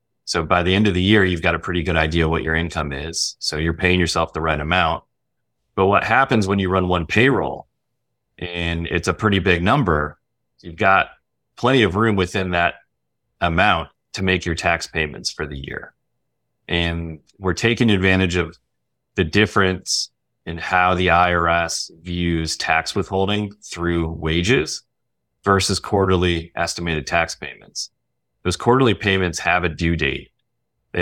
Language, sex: English, male